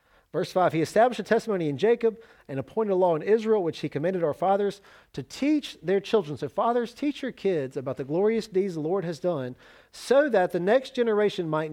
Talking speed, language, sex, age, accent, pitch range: 215 wpm, English, male, 40-59, American, 155-215 Hz